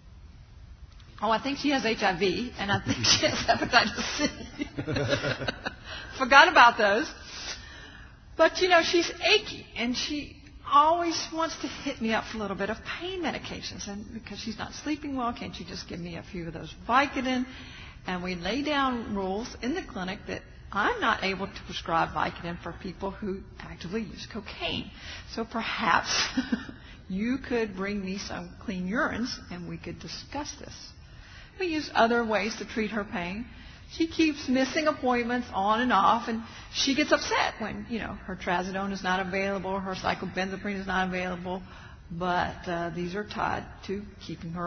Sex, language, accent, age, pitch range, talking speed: female, English, American, 50-69, 185-260 Hz, 170 wpm